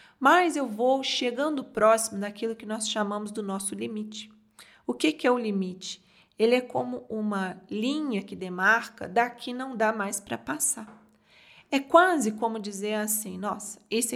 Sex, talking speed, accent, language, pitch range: female, 160 wpm, Brazilian, Portuguese, 205-255 Hz